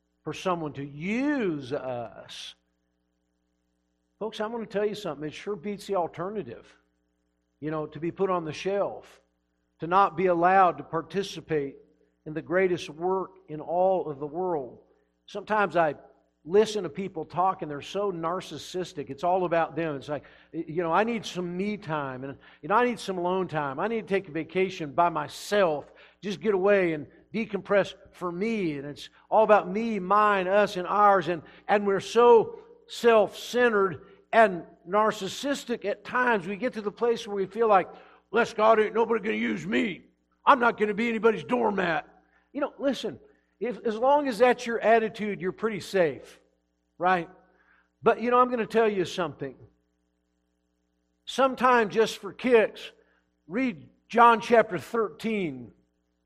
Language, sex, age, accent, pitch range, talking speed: English, male, 50-69, American, 150-215 Hz, 170 wpm